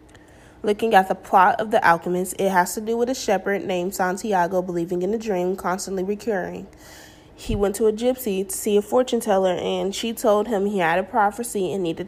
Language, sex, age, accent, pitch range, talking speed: English, female, 20-39, American, 180-210 Hz, 210 wpm